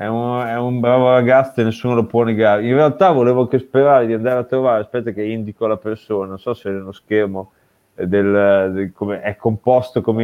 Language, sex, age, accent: Italian, male, 30-49, native